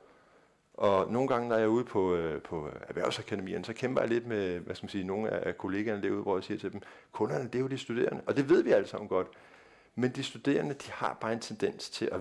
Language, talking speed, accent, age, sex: Danish, 250 wpm, native, 50-69, male